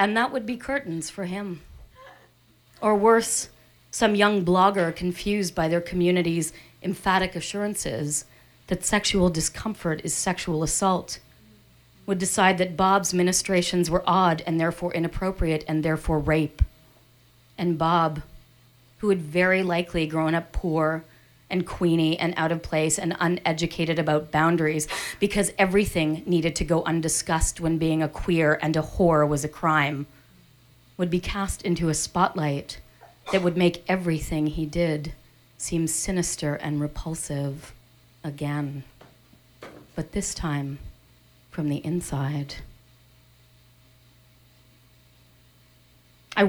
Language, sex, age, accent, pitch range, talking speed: English, female, 40-59, American, 145-180 Hz, 125 wpm